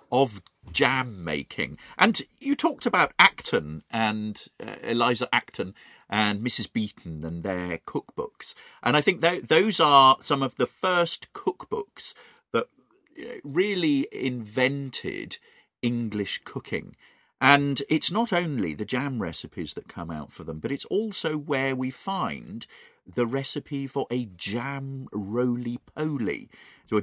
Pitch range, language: 95-140 Hz, English